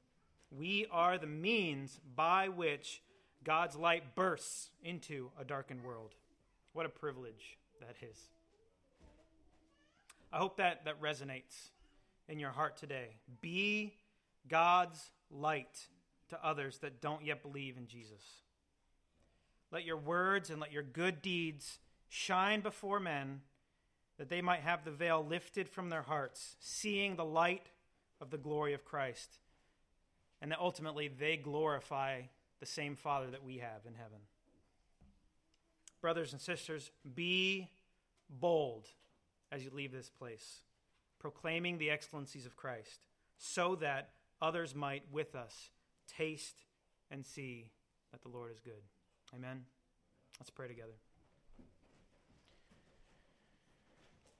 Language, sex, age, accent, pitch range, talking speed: English, male, 30-49, American, 125-165 Hz, 125 wpm